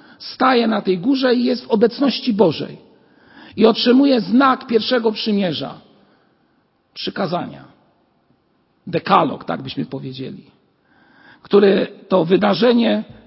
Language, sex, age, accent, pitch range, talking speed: Polish, male, 50-69, native, 200-265 Hz, 100 wpm